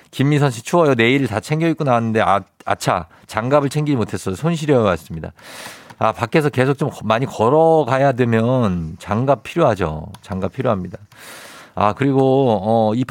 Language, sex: Korean, male